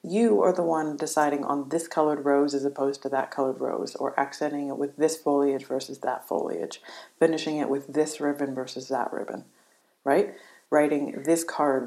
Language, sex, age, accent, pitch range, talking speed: English, female, 30-49, American, 135-160 Hz, 180 wpm